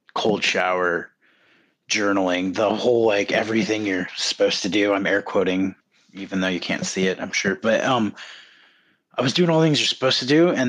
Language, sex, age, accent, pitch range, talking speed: English, male, 30-49, American, 90-105 Hz, 190 wpm